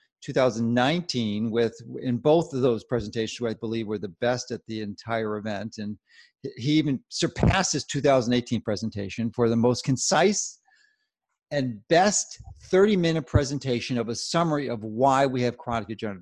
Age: 40-59